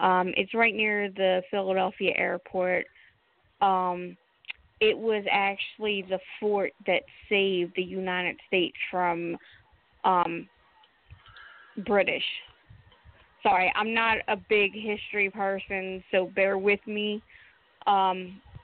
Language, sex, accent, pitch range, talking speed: English, female, American, 190-235 Hz, 105 wpm